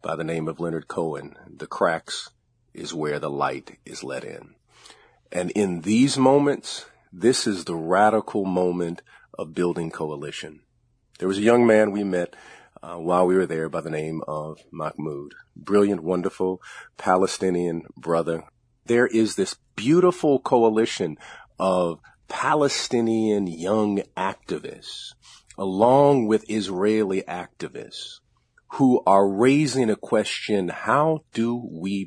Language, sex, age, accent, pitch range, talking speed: English, male, 40-59, American, 85-115 Hz, 130 wpm